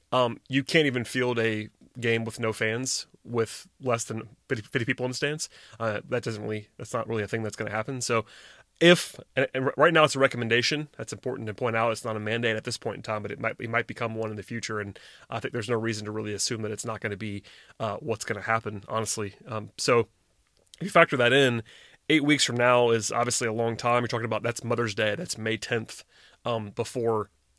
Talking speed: 245 wpm